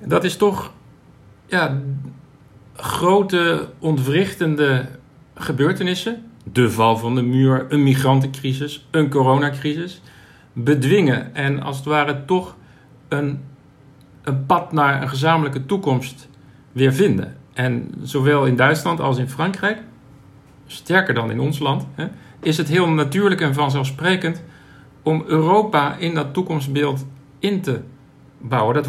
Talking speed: 115 wpm